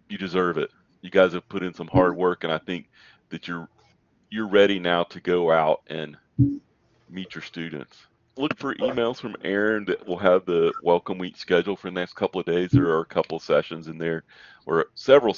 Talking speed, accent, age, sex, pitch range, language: 210 wpm, American, 40-59, male, 80-95 Hz, English